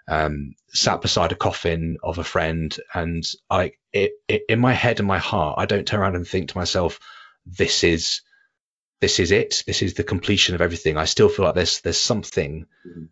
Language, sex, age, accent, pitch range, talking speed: English, male, 30-49, British, 85-110 Hz, 190 wpm